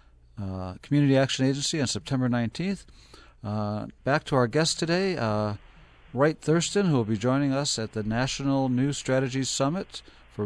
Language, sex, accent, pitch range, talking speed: English, male, American, 105-135 Hz, 160 wpm